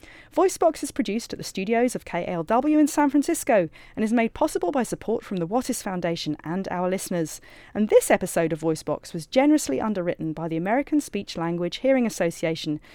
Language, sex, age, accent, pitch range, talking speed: English, female, 40-59, British, 170-250 Hz, 180 wpm